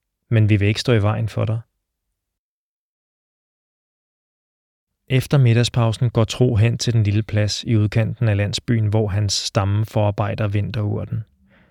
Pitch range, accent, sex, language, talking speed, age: 105-120 Hz, native, male, Danish, 140 wpm, 20-39